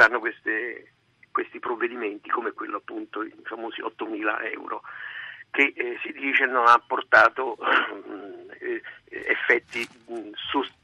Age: 50-69